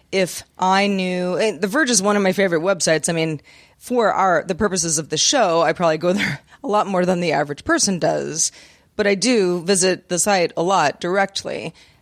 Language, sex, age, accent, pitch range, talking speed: English, female, 30-49, American, 170-220 Hz, 205 wpm